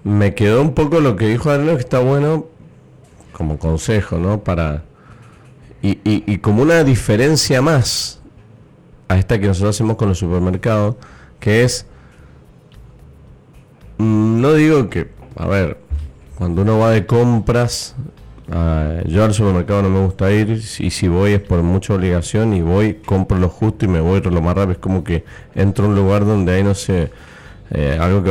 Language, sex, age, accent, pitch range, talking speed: Spanish, male, 30-49, Argentinian, 95-125 Hz, 180 wpm